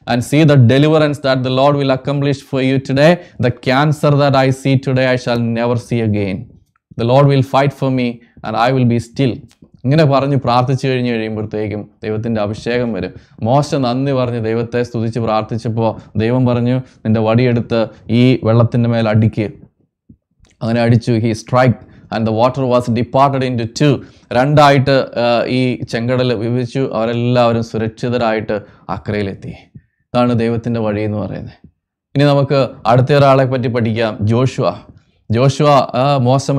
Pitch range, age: 115-140 Hz, 20-39